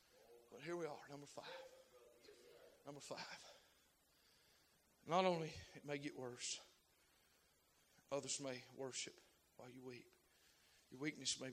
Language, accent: English, American